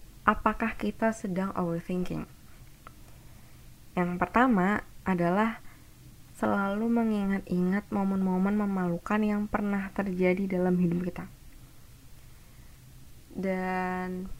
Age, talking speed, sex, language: 20-39, 75 wpm, female, Indonesian